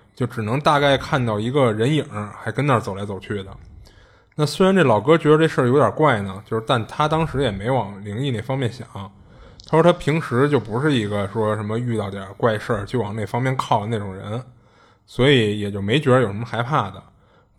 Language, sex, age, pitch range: Chinese, male, 20-39, 105-145 Hz